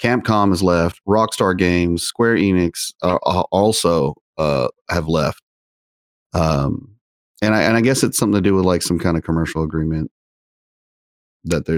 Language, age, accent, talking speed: English, 30-49, American, 155 wpm